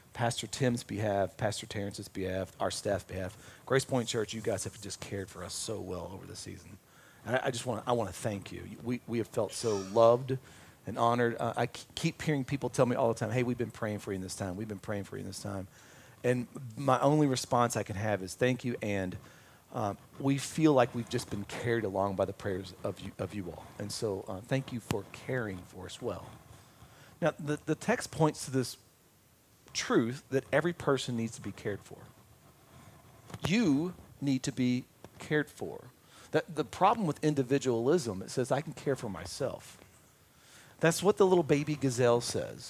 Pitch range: 105-140 Hz